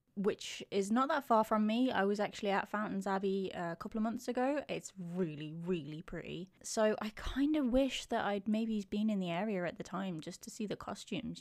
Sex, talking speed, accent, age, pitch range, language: female, 220 wpm, British, 20-39, 190-230 Hz, English